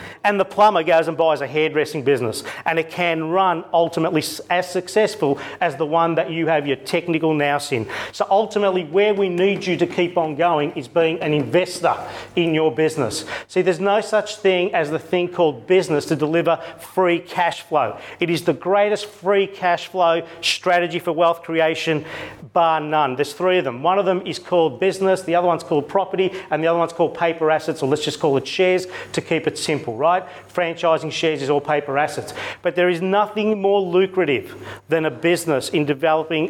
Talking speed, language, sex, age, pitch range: 200 wpm, English, male, 40-59, 155-185 Hz